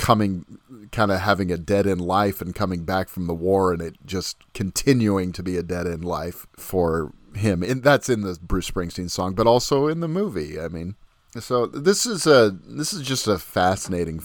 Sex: male